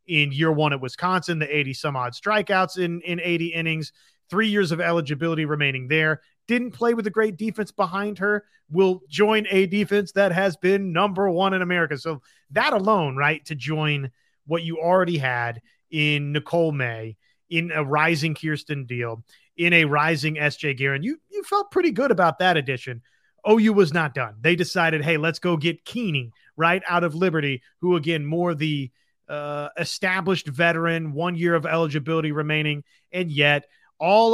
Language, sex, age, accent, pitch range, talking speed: English, male, 30-49, American, 150-190 Hz, 175 wpm